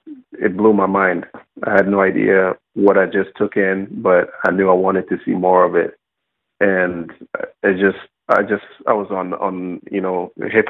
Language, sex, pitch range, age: English, male, 90-100 Hz, 30-49